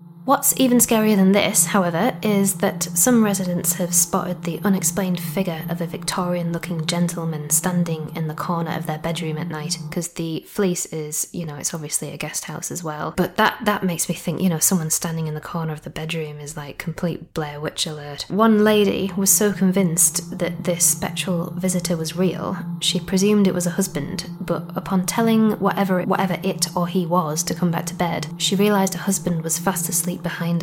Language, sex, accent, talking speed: English, female, British, 200 wpm